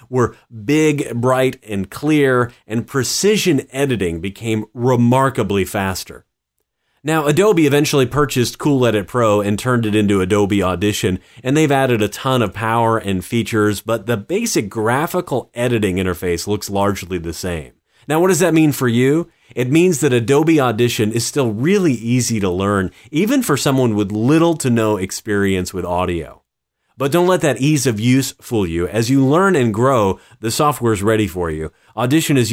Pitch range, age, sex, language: 100-130 Hz, 30-49, male, English